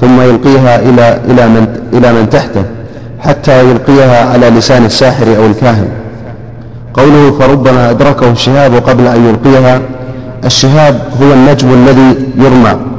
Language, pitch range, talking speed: Arabic, 120-135 Hz, 125 wpm